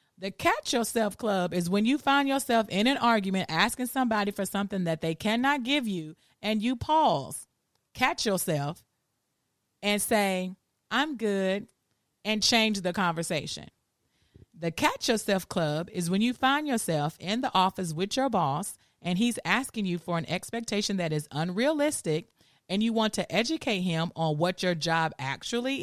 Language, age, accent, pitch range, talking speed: English, 30-49, American, 165-235 Hz, 165 wpm